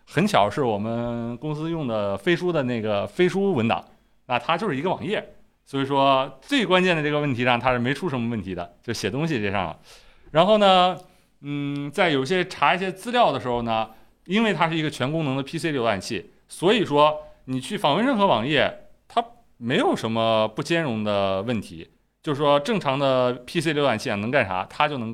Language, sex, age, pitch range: Chinese, male, 30-49, 120-180 Hz